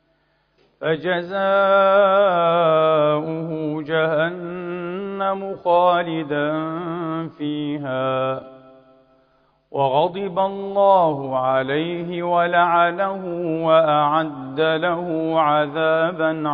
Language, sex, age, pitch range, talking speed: Arabic, male, 50-69, 150-195 Hz, 40 wpm